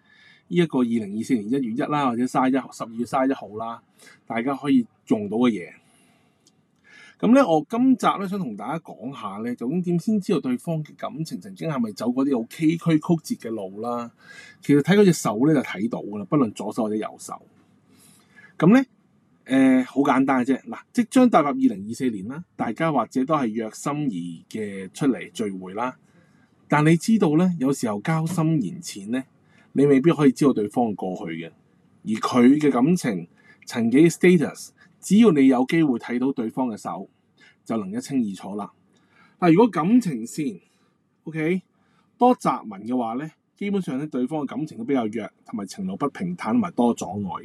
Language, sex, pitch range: Chinese, male, 130-215 Hz